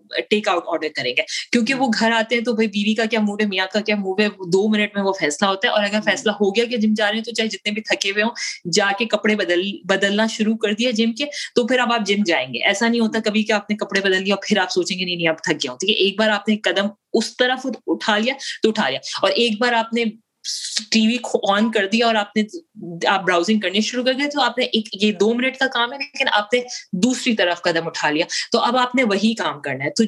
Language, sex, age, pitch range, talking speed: Urdu, female, 30-49, 195-235 Hz, 220 wpm